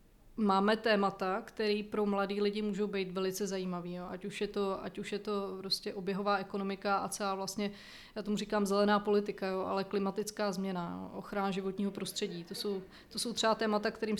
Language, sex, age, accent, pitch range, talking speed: Czech, female, 20-39, native, 195-210 Hz, 170 wpm